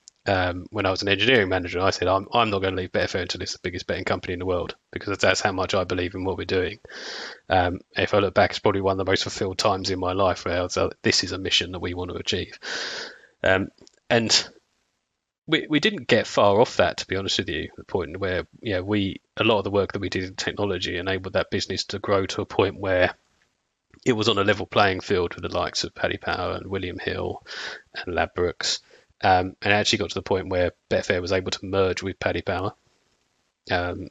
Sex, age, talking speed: male, 30-49, 240 wpm